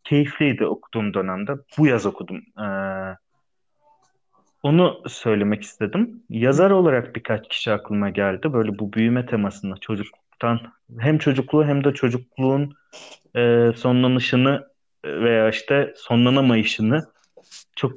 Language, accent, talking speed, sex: Turkish, native, 105 wpm, male